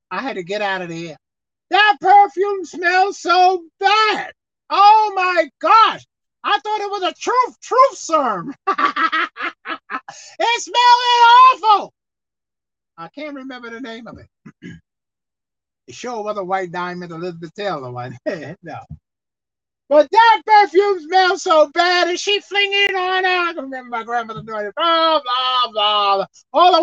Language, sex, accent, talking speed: English, male, American, 150 wpm